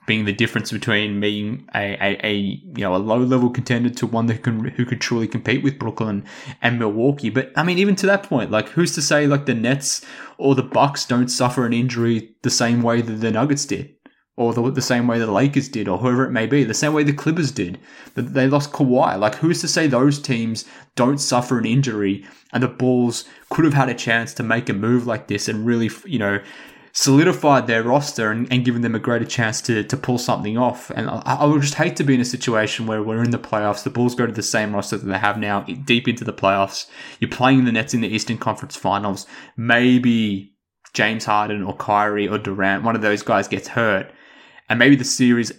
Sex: male